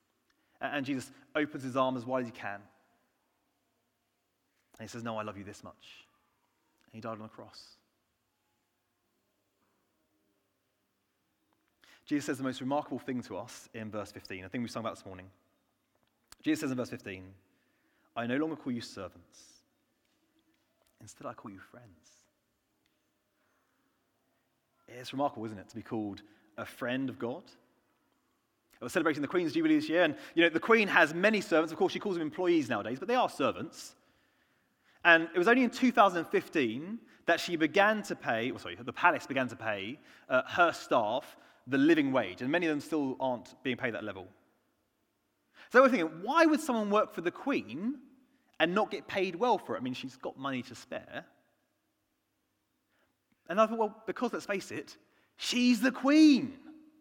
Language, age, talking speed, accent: English, 30-49, 175 wpm, British